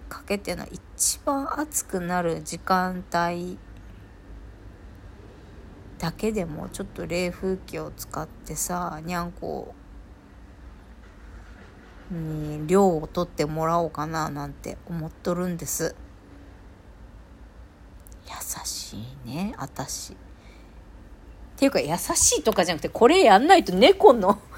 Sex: female